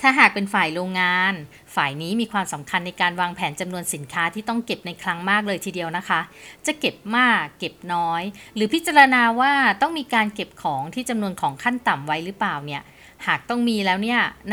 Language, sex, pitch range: Thai, female, 175-225 Hz